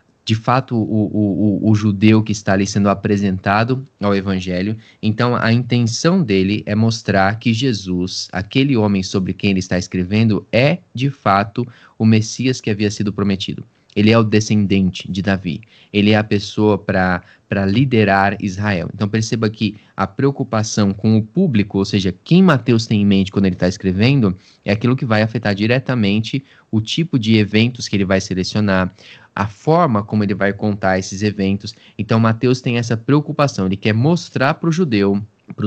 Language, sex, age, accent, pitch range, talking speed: Portuguese, male, 20-39, Brazilian, 100-120 Hz, 175 wpm